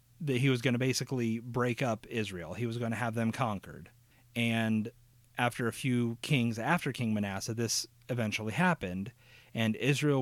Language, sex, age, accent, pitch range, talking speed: English, male, 30-49, American, 110-130 Hz, 170 wpm